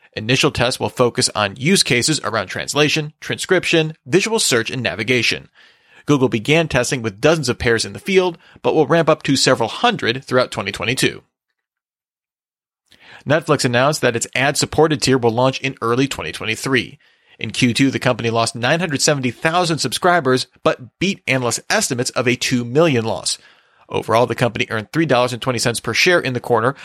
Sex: male